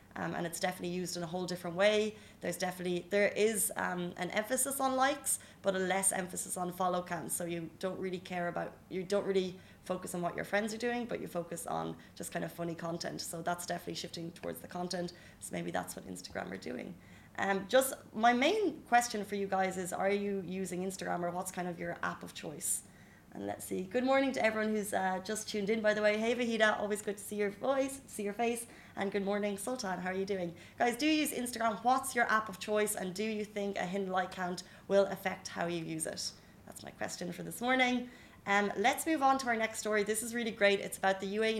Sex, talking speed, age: female, 240 wpm, 20-39